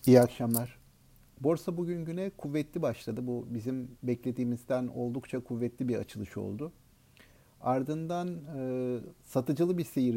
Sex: male